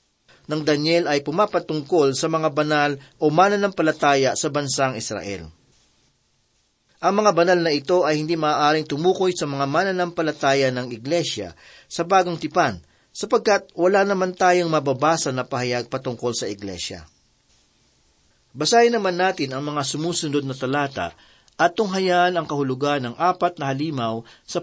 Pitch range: 130-175 Hz